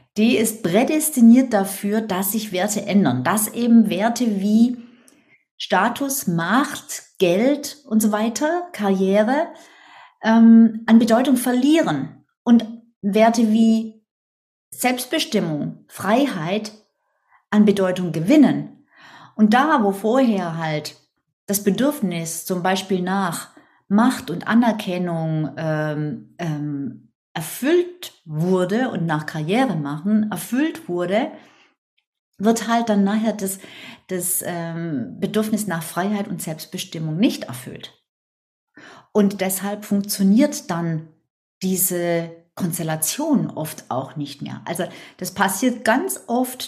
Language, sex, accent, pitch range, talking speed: German, female, German, 175-235 Hz, 105 wpm